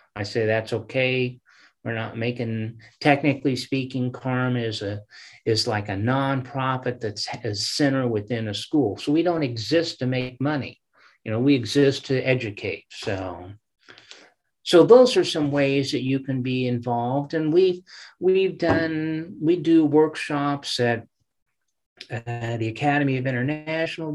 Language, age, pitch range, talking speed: English, 50-69, 115-145 Hz, 145 wpm